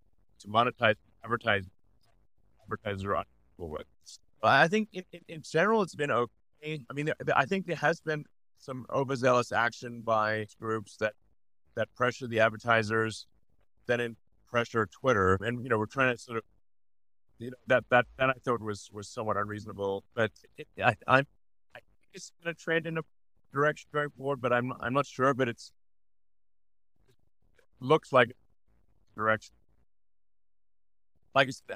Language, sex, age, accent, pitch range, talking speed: English, male, 30-49, American, 100-130 Hz, 160 wpm